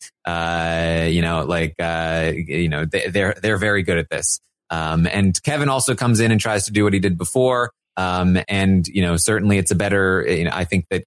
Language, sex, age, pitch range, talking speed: English, male, 30-49, 95-135 Hz, 220 wpm